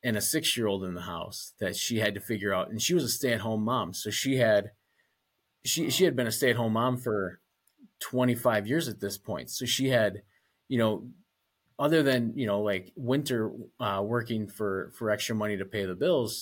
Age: 30-49